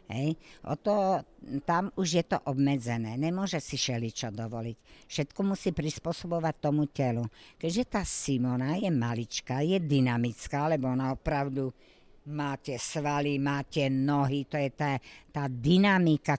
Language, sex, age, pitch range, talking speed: Slovak, female, 60-79, 130-165 Hz, 130 wpm